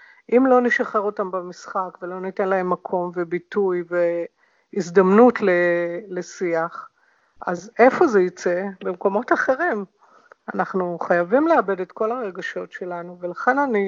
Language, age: Hebrew, 50-69